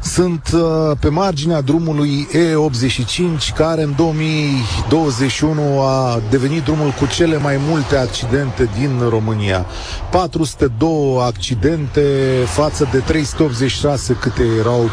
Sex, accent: male, native